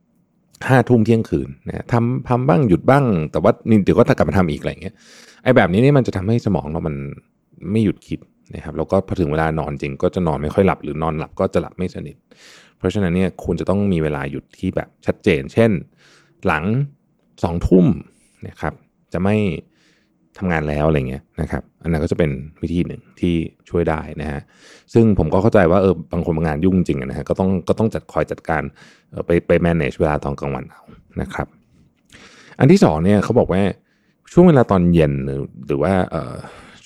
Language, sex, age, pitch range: Thai, male, 20-39, 80-100 Hz